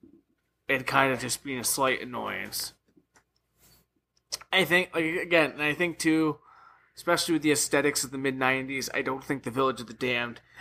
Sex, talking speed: male, 170 wpm